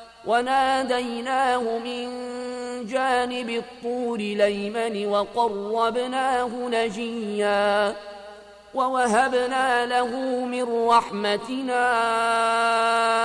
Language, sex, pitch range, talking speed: Arabic, male, 225-245 Hz, 50 wpm